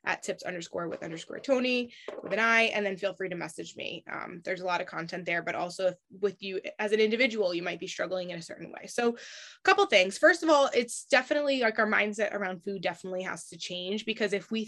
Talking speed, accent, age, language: 245 wpm, American, 20-39, English